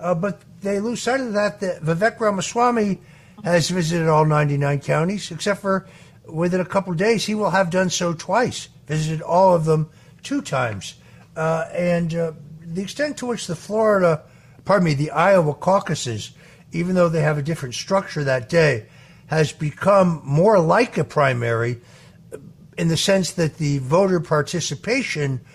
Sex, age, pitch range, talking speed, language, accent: male, 60-79, 150-185 Hz, 165 wpm, English, American